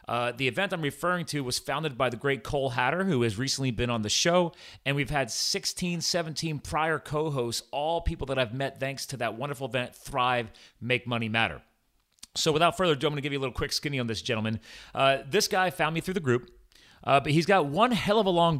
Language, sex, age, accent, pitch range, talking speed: English, male, 30-49, American, 115-150 Hz, 240 wpm